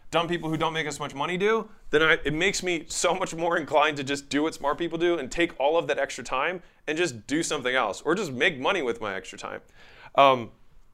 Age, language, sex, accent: 20-39, English, male, American